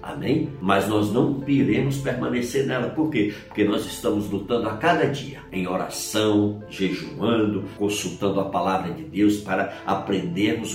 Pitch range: 95-110 Hz